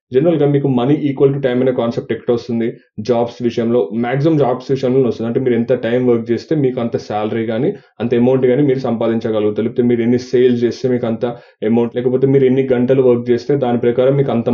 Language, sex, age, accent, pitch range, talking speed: Telugu, male, 20-39, native, 120-135 Hz, 205 wpm